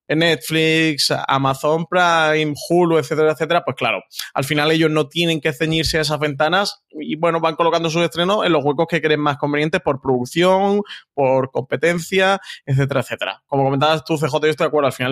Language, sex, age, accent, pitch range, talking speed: Spanish, male, 20-39, Spanish, 130-165 Hz, 185 wpm